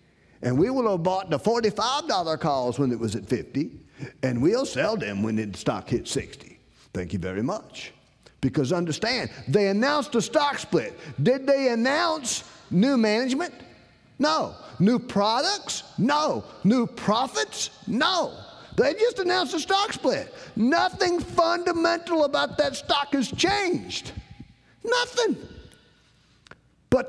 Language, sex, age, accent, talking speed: English, male, 40-59, American, 135 wpm